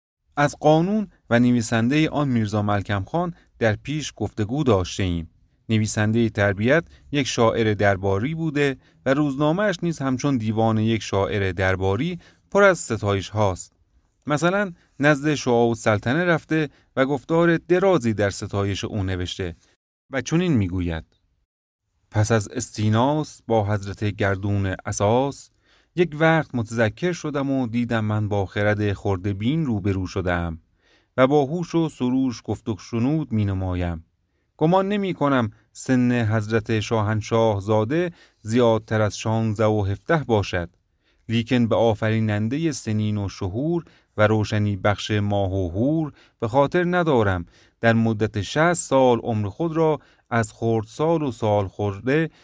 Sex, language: male, Persian